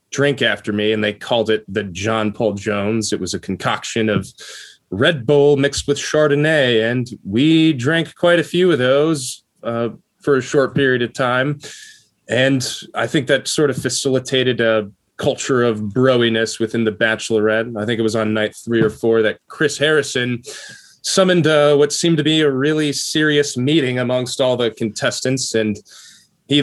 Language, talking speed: English, 175 wpm